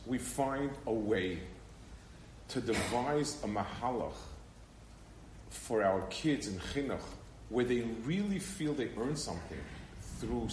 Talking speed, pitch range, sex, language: 120 wpm, 110-150 Hz, male, English